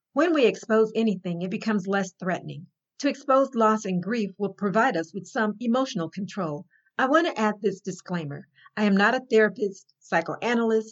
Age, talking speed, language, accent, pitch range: 50-69, 175 wpm, English, American, 180-220 Hz